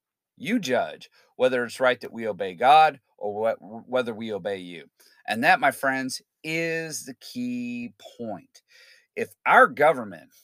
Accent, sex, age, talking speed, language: American, male, 40-59, 145 wpm, English